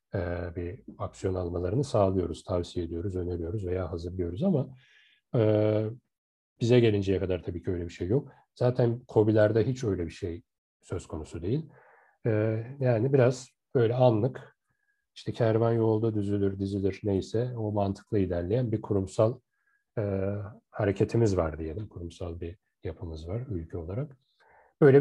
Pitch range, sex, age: 95-130 Hz, male, 40-59